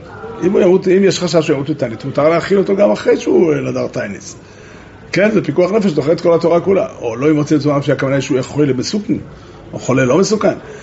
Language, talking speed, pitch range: Hebrew, 215 wpm, 140-235 Hz